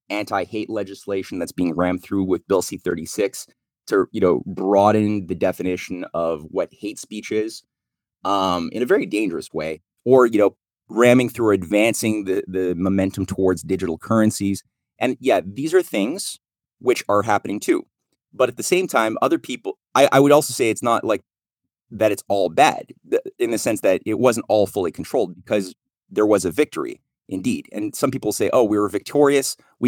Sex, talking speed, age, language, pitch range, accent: male, 185 wpm, 30-49, English, 95-135 Hz, American